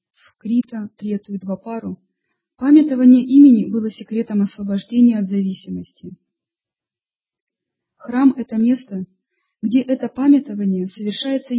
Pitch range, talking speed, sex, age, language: 200-250 Hz, 105 wpm, female, 30-49, Russian